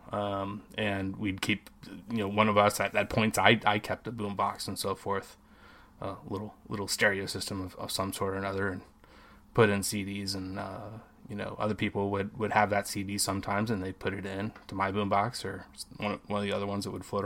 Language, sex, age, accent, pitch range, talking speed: English, male, 20-39, American, 100-110 Hz, 240 wpm